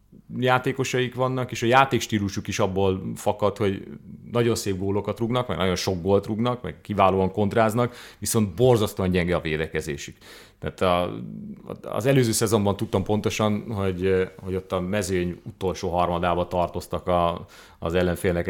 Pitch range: 90-115 Hz